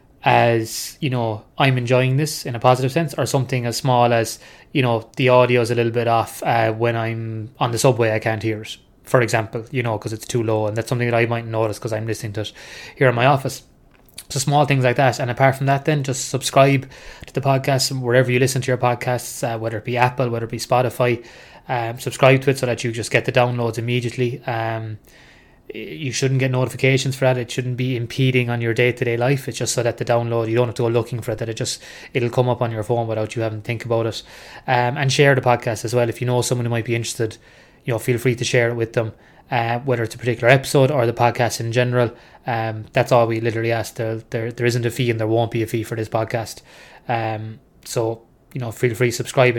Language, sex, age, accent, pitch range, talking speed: English, male, 20-39, Irish, 115-130 Hz, 250 wpm